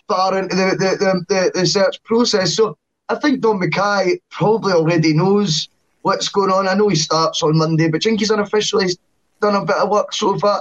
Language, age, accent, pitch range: English, 10-29, British, 155-215 Hz